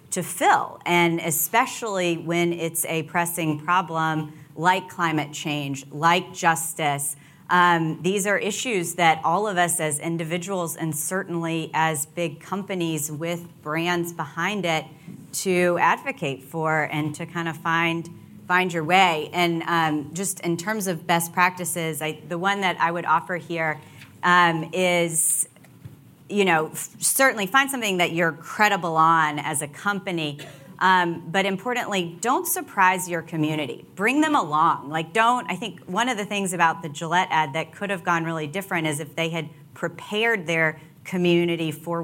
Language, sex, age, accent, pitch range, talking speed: English, female, 30-49, American, 160-185 Hz, 155 wpm